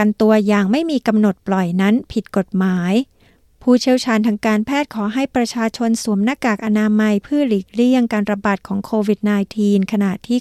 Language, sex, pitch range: Thai, female, 200-240 Hz